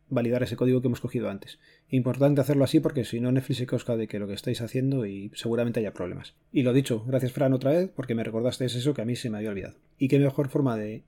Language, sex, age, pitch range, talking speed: Spanish, male, 30-49, 120-145 Hz, 265 wpm